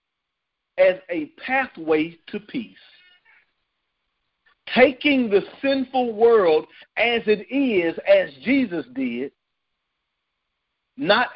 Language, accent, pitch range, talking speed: English, American, 165-255 Hz, 85 wpm